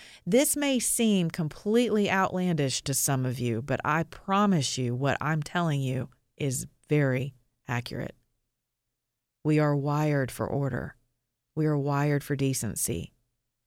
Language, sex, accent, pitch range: English, female, American, 125-165 Hz